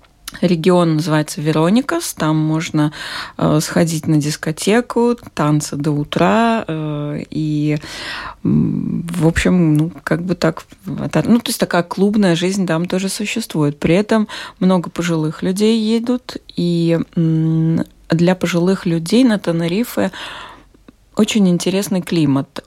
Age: 20-39